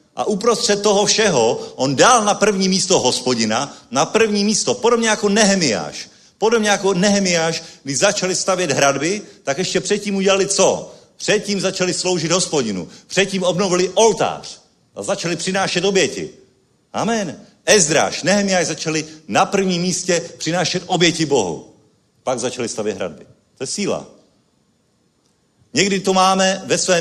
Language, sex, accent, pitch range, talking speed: Czech, male, native, 155-195 Hz, 135 wpm